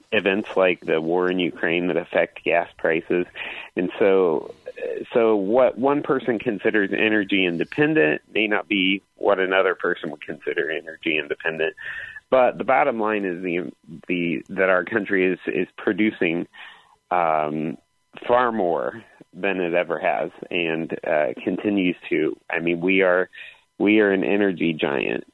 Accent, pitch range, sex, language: American, 90-125 Hz, male, English